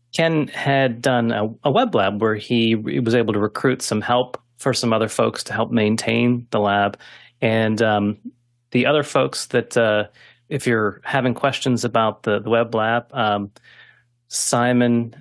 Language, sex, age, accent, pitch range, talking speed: English, male, 30-49, American, 115-135 Hz, 170 wpm